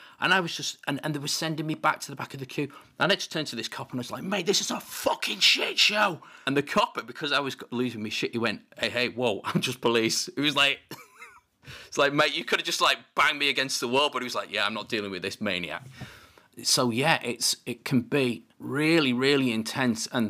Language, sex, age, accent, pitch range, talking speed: English, male, 30-49, British, 110-155 Hz, 265 wpm